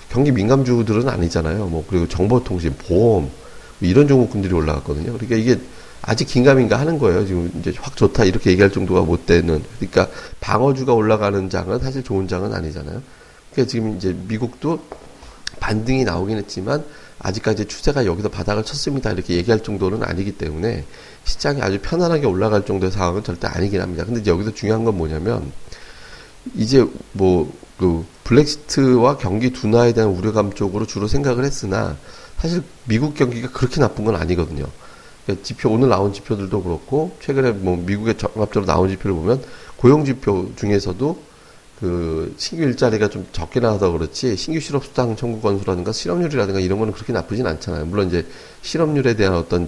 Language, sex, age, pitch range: Korean, male, 40-59, 90-125 Hz